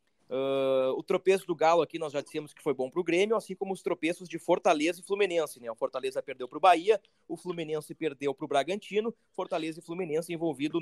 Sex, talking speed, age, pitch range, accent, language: male, 205 wpm, 20-39, 150-195 Hz, Brazilian, Portuguese